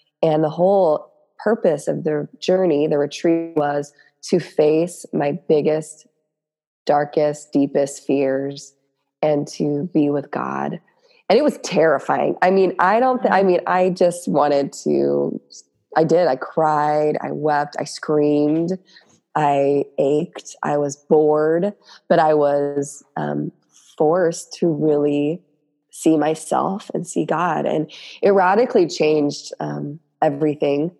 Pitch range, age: 145-165 Hz, 20-39